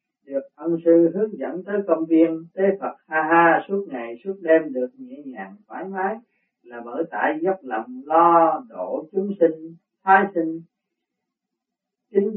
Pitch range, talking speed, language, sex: 160-185 Hz, 160 wpm, Vietnamese, male